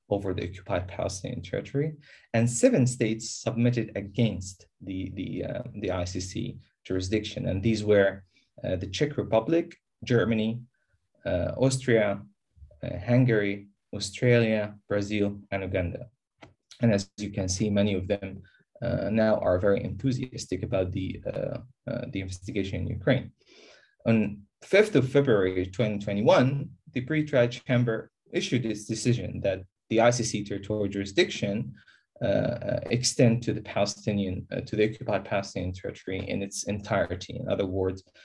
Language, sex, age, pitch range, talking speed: English, male, 20-39, 95-120 Hz, 140 wpm